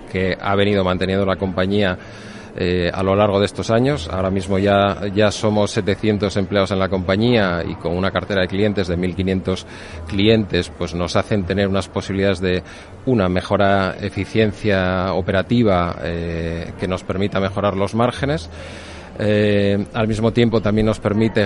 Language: Spanish